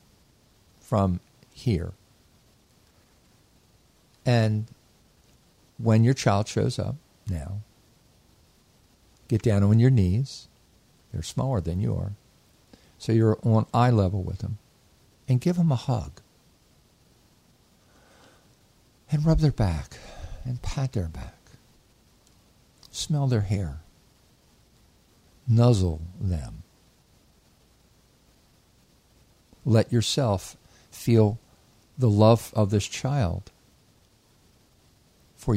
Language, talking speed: English, 90 wpm